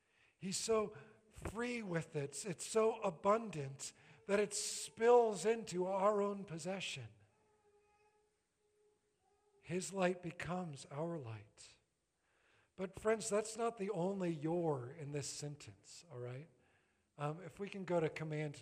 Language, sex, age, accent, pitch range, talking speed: English, male, 50-69, American, 125-175 Hz, 125 wpm